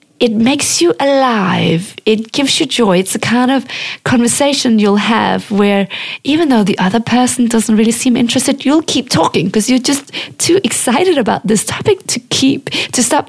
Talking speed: 175 wpm